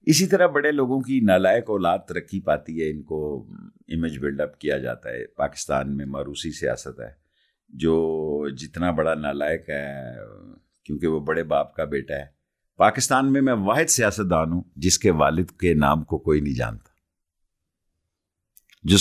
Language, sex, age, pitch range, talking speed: Urdu, male, 50-69, 80-115 Hz, 160 wpm